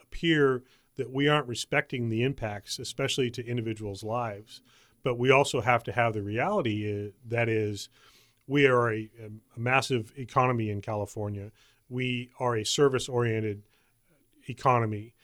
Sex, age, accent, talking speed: male, 40-59, American, 135 wpm